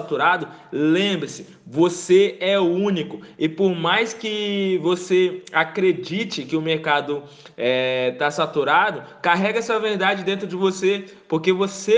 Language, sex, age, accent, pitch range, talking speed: Portuguese, male, 20-39, Brazilian, 175-210 Hz, 130 wpm